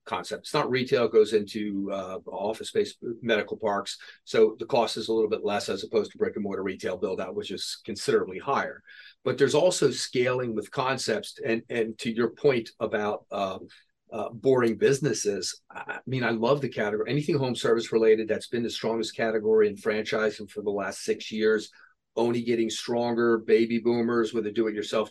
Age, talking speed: 40-59, 195 wpm